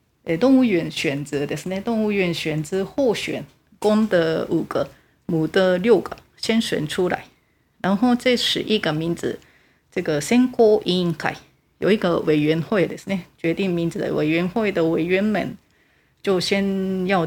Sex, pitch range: female, 165-210 Hz